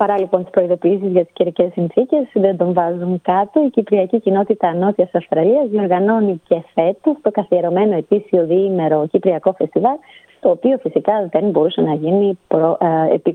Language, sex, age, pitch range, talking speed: Greek, female, 30-49, 165-215 Hz, 155 wpm